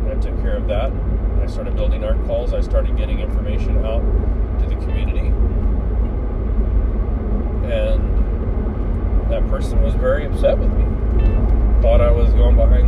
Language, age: English, 40-59